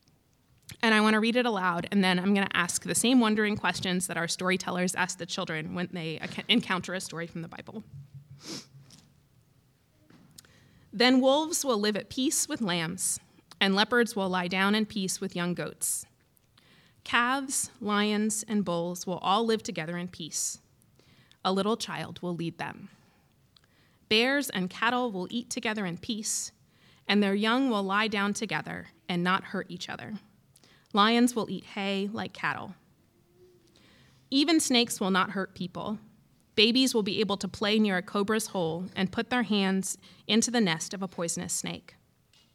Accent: American